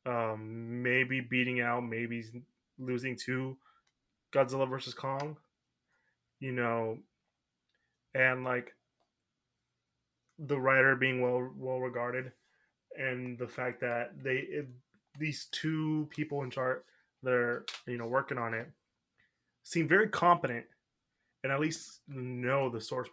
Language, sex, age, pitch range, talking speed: English, male, 20-39, 120-145 Hz, 120 wpm